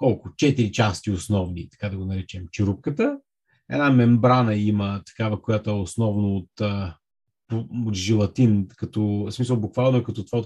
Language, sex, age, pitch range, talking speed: Bulgarian, male, 30-49, 100-120 Hz, 155 wpm